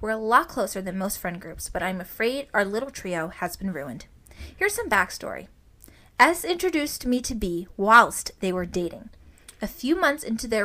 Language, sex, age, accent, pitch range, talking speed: English, female, 20-39, American, 185-230 Hz, 190 wpm